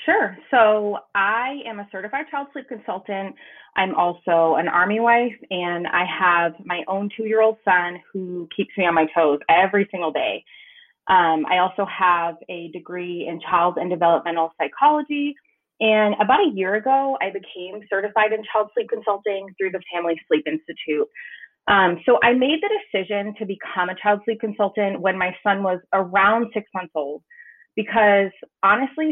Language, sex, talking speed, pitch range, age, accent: English, female, 165 wpm, 175-220 Hz, 30-49, American